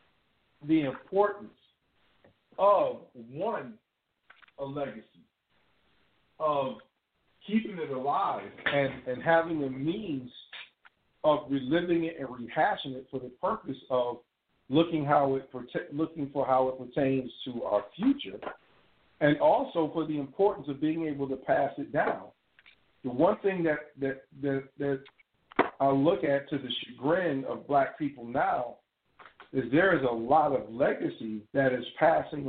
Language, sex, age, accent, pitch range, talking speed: English, male, 50-69, American, 130-160 Hz, 140 wpm